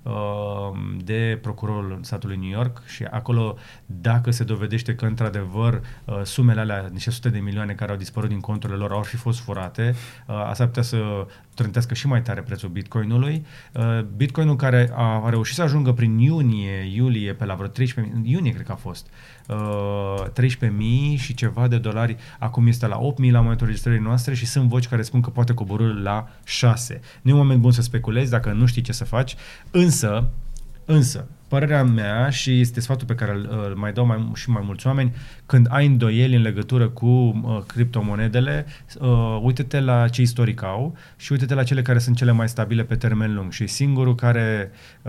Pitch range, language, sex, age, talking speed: 110-125 Hz, Romanian, male, 30-49, 190 wpm